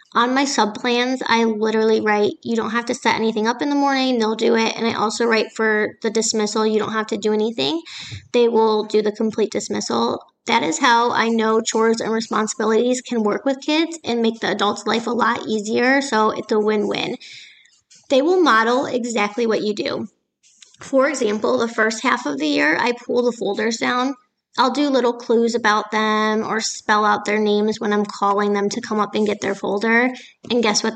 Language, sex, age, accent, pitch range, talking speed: English, female, 20-39, American, 215-245 Hz, 210 wpm